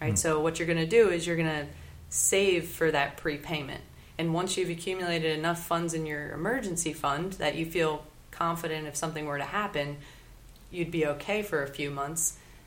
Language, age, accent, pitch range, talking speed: English, 20-39, American, 145-165 Hz, 195 wpm